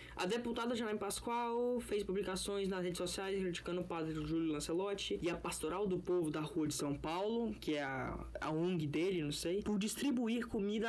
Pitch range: 170-220 Hz